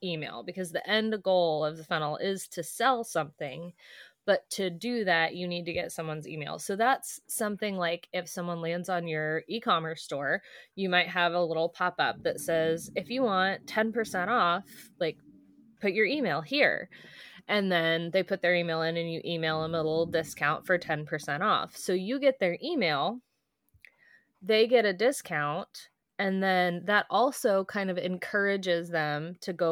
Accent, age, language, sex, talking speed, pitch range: American, 20-39, English, female, 175 wpm, 165-205 Hz